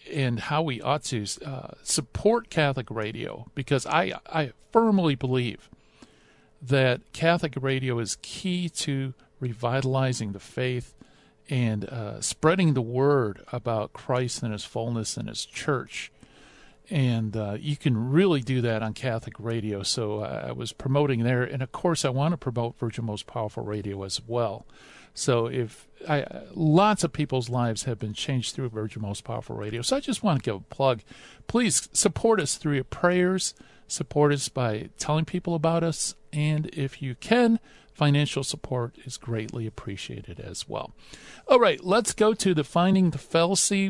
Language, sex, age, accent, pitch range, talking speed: English, male, 50-69, American, 115-165 Hz, 165 wpm